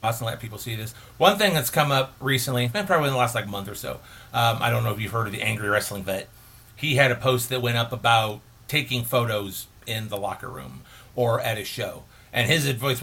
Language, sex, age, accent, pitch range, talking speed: English, male, 40-59, American, 115-135 Hz, 245 wpm